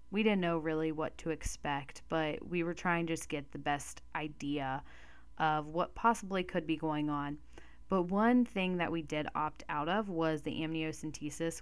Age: 10-29